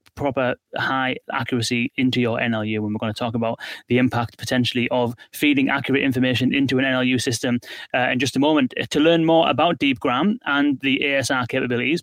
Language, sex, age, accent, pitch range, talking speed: English, male, 30-49, British, 120-140 Hz, 185 wpm